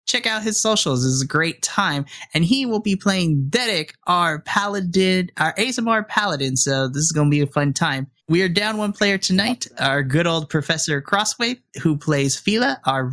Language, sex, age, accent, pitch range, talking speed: English, male, 20-39, American, 140-200 Hz, 200 wpm